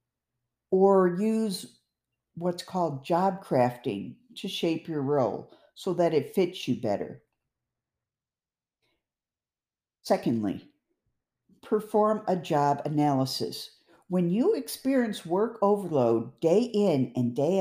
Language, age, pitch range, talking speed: English, 50-69, 150-210 Hz, 100 wpm